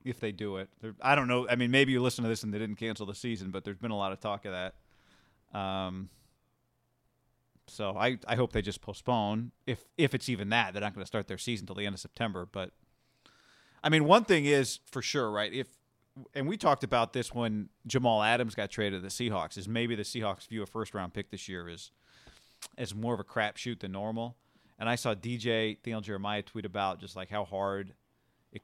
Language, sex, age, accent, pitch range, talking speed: English, male, 30-49, American, 105-125 Hz, 235 wpm